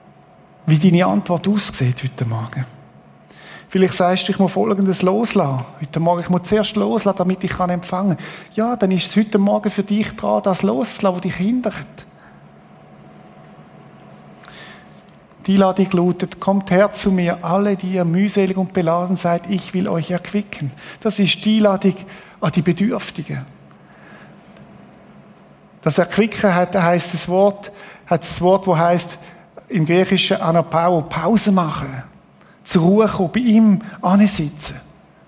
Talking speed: 135 wpm